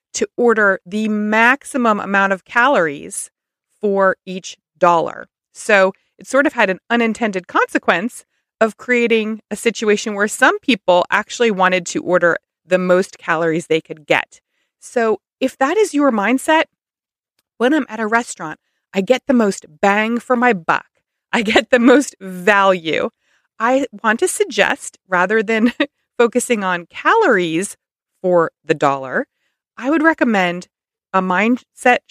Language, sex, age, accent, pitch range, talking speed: English, female, 30-49, American, 185-245 Hz, 140 wpm